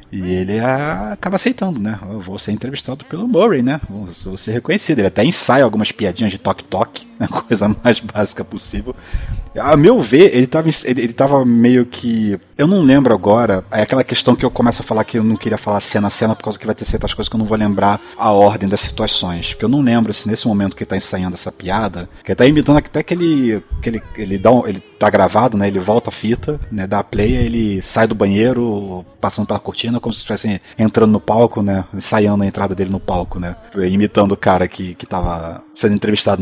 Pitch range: 95-120 Hz